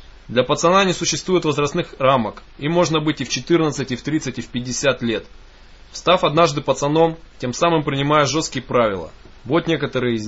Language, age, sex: Russian, 20-39, male